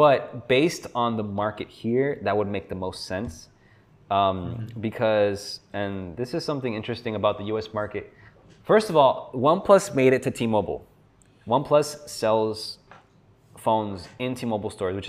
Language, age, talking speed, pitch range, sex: English, 20-39, 150 wpm, 100-140 Hz, male